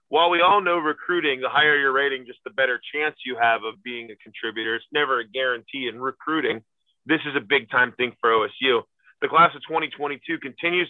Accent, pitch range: American, 120-155 Hz